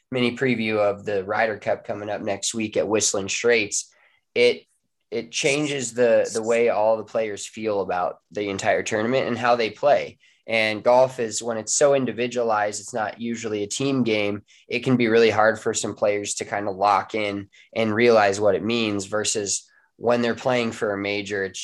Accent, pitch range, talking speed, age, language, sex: American, 105-120 Hz, 195 wpm, 20-39, English, male